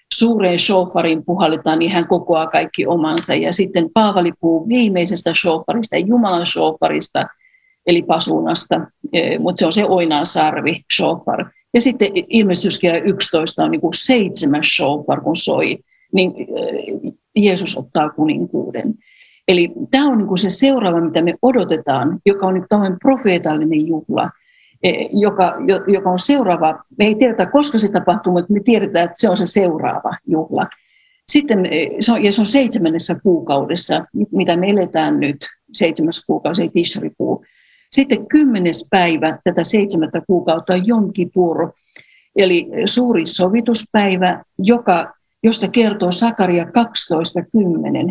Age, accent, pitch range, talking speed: 50-69, native, 170-225 Hz, 130 wpm